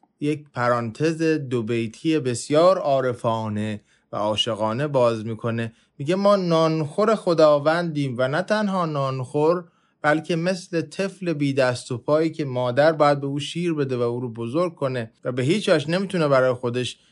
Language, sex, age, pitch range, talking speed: Persian, male, 20-39, 125-170 Hz, 150 wpm